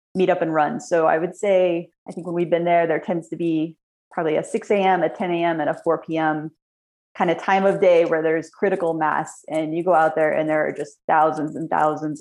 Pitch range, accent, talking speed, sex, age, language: 155-180 Hz, American, 245 wpm, female, 30-49, English